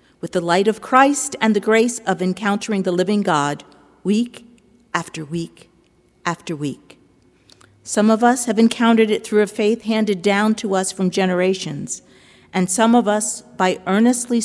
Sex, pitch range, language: female, 175-220 Hz, English